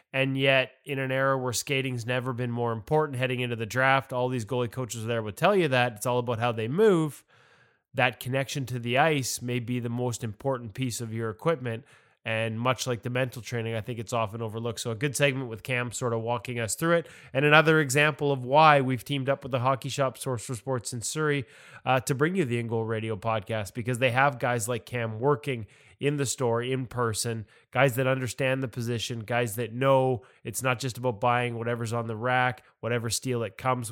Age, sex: 20-39, male